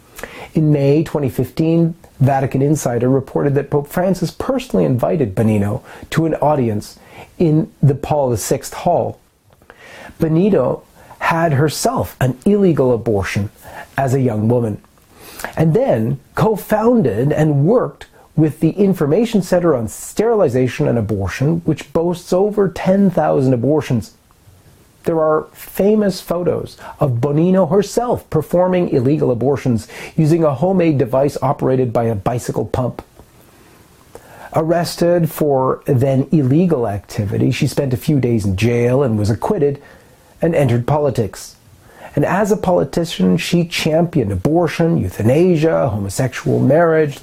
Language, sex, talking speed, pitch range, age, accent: English, male, 120 wpm, 125-165 Hz, 40-59, American